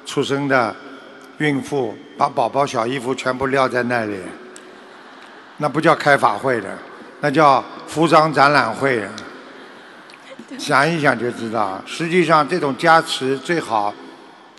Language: Chinese